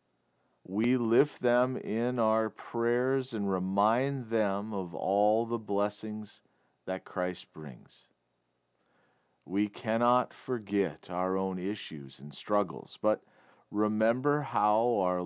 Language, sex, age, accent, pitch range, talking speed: English, male, 40-59, American, 85-120 Hz, 110 wpm